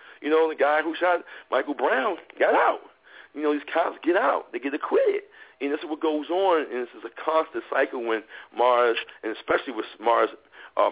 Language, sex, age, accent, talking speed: English, male, 40-59, American, 210 wpm